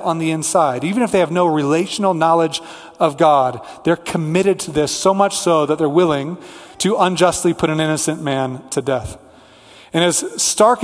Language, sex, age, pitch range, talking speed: English, male, 30-49, 155-190 Hz, 185 wpm